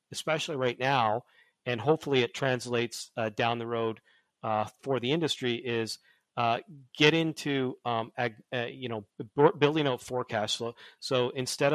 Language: English